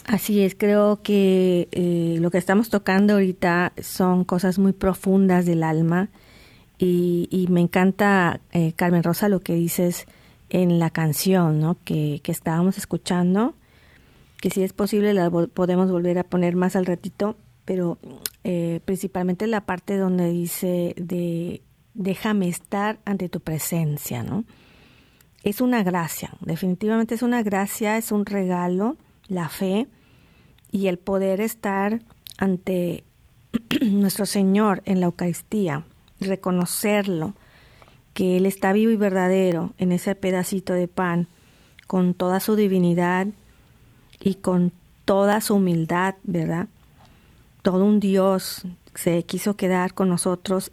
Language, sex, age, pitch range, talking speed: Spanish, female, 40-59, 175-200 Hz, 135 wpm